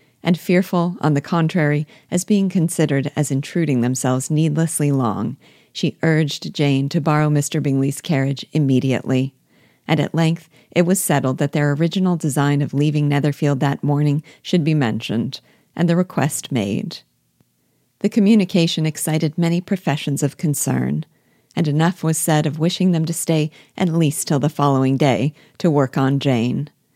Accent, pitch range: American, 135-165 Hz